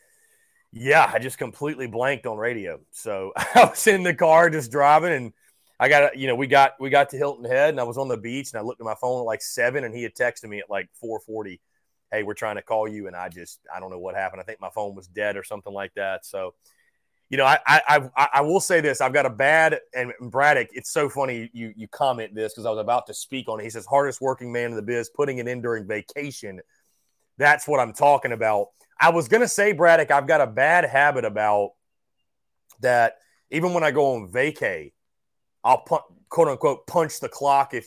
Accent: American